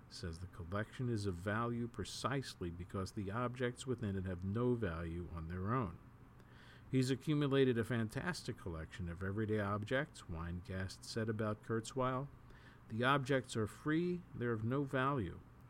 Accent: American